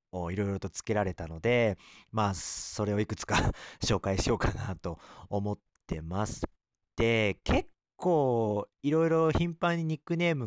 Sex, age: male, 40-59